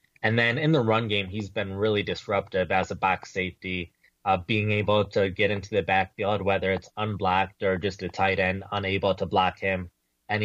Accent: American